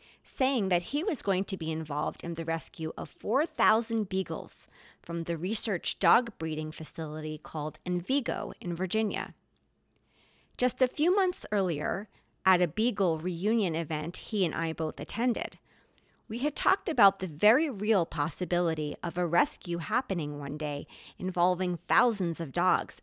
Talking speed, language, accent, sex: 150 wpm, English, American, female